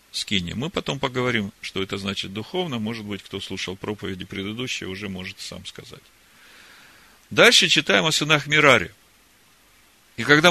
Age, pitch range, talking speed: 40-59, 115-160 Hz, 145 wpm